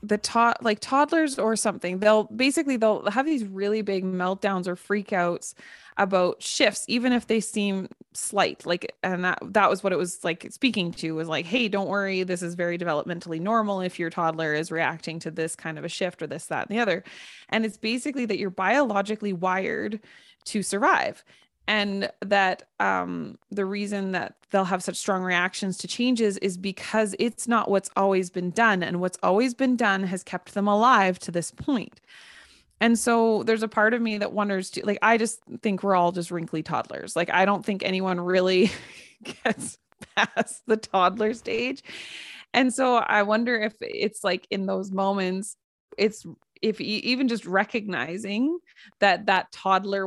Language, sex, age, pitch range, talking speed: English, female, 20-39, 180-220 Hz, 180 wpm